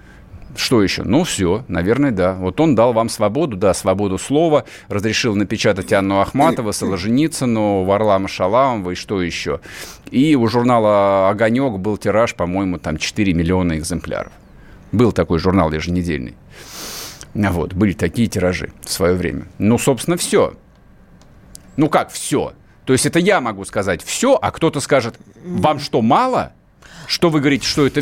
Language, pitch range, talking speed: Russian, 105-155 Hz, 150 wpm